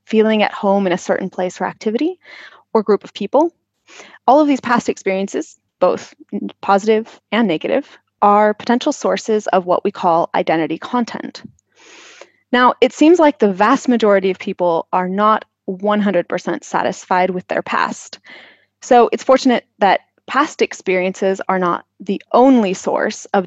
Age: 20-39